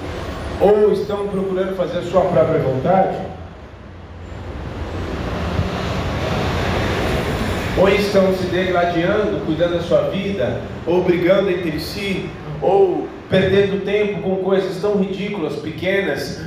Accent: Brazilian